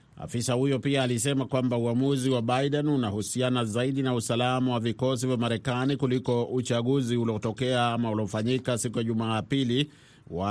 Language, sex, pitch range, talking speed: Swahili, male, 115-130 Hz, 145 wpm